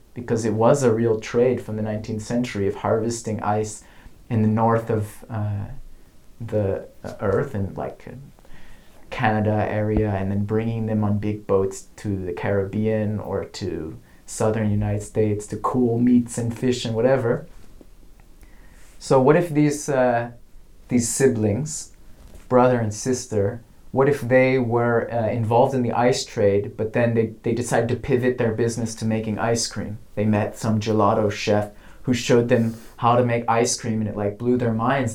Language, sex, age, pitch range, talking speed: English, male, 30-49, 105-125 Hz, 165 wpm